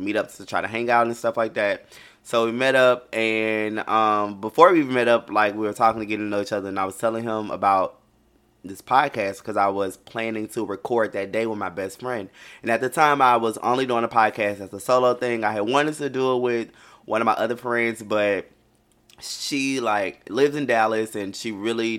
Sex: male